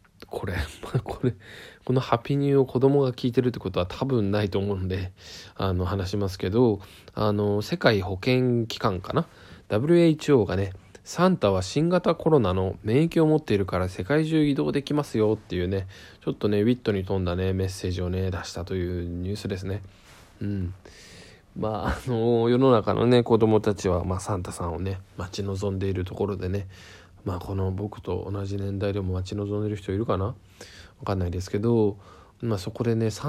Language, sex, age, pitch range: Japanese, male, 20-39, 95-120 Hz